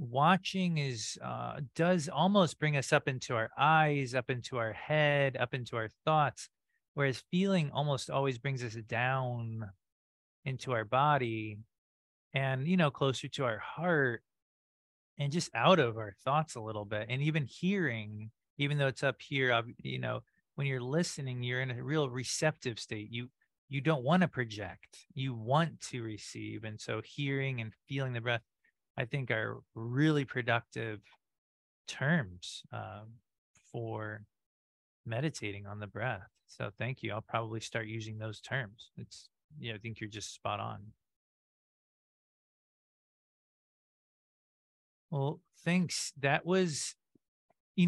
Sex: male